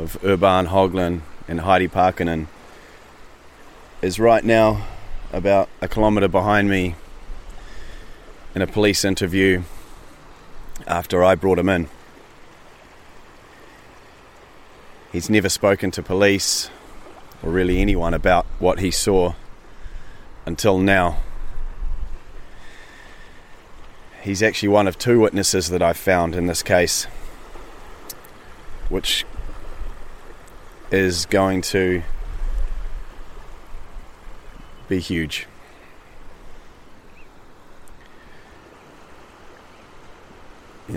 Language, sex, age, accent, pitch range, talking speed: English, male, 30-49, Australian, 85-95 Hz, 80 wpm